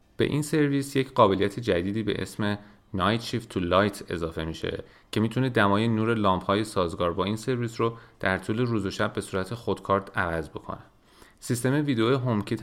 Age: 30-49